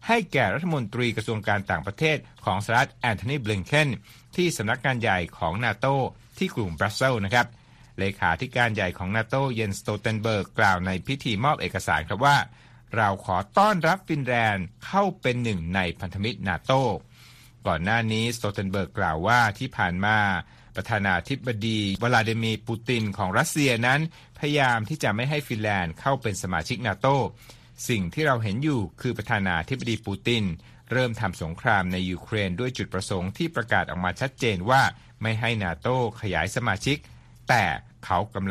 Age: 60-79